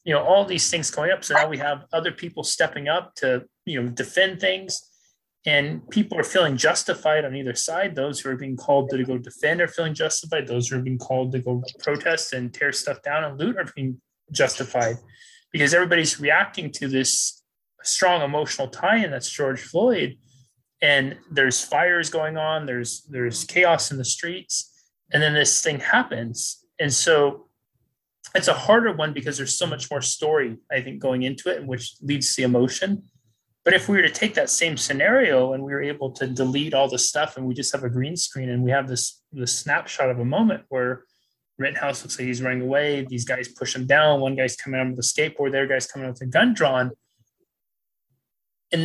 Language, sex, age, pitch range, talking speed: English, male, 30-49, 125-160 Hz, 205 wpm